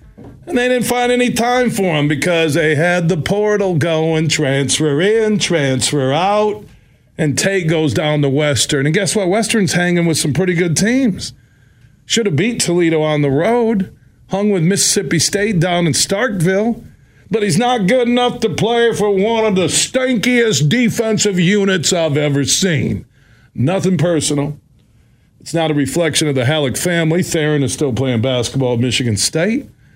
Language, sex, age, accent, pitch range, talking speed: English, male, 40-59, American, 130-175 Hz, 165 wpm